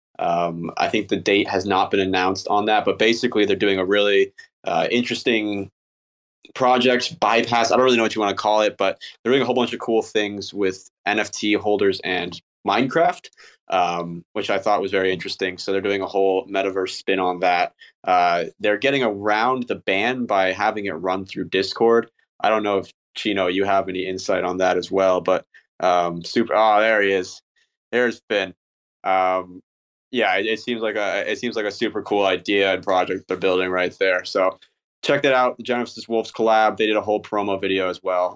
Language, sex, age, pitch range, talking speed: English, male, 20-39, 95-115 Hz, 205 wpm